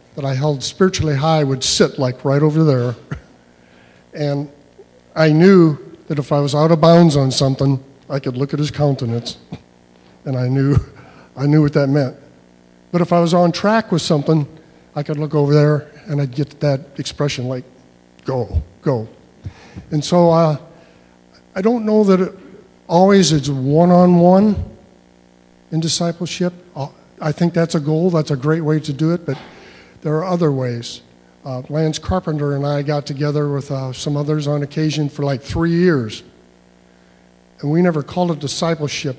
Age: 50-69